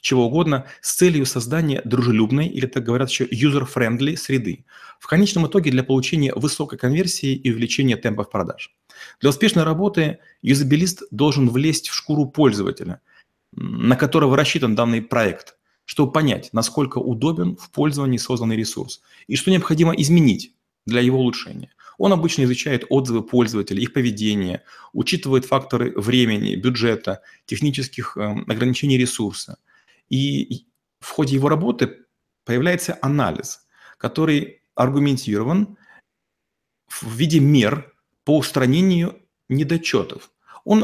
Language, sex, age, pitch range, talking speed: Russian, male, 30-49, 120-155 Hz, 120 wpm